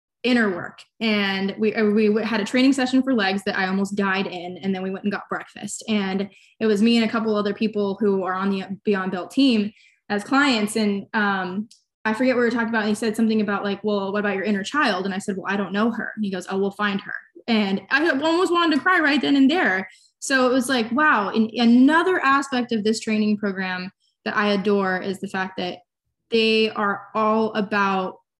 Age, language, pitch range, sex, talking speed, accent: 20-39, English, 200-240 Hz, female, 230 wpm, American